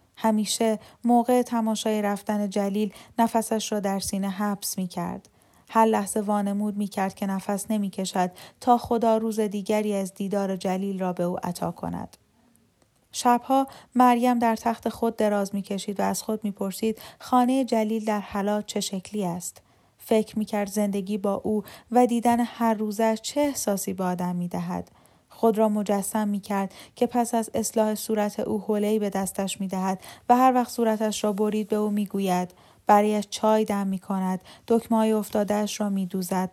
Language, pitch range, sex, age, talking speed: Persian, 195-225 Hz, female, 10-29, 160 wpm